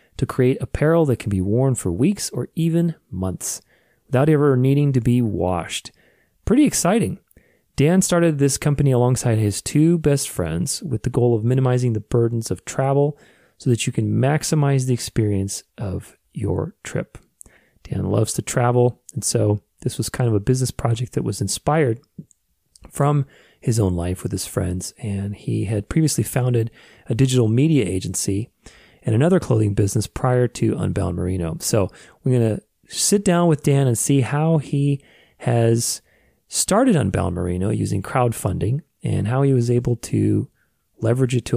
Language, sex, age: English, male, 30-49